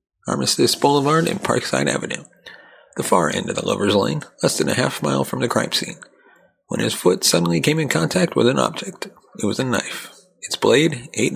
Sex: male